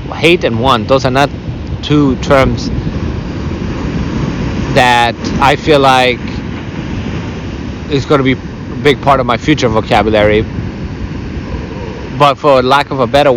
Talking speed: 130 wpm